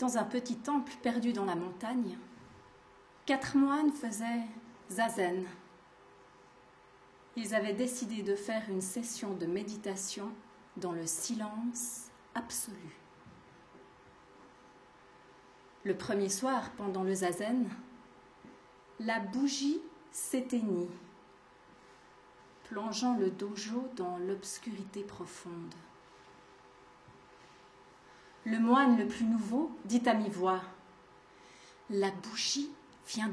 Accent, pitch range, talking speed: French, 190-245 Hz, 90 wpm